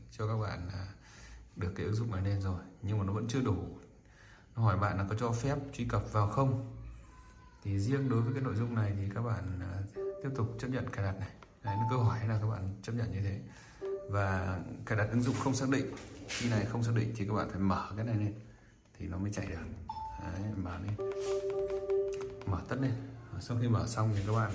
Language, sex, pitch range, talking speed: Vietnamese, male, 100-120 Hz, 230 wpm